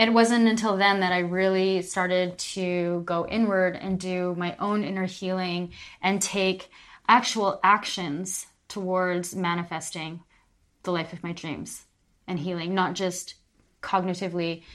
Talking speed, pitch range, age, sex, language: 135 wpm, 175-205 Hz, 20-39, female, English